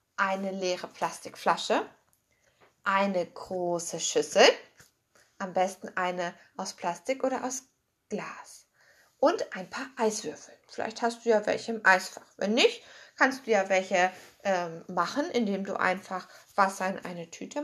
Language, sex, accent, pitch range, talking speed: German, female, German, 195-275 Hz, 135 wpm